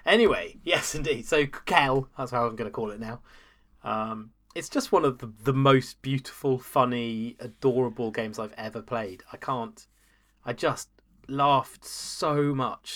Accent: British